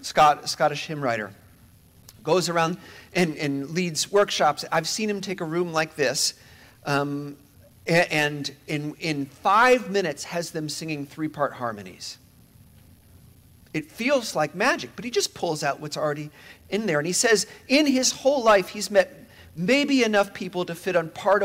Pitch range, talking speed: 115-165 Hz, 165 wpm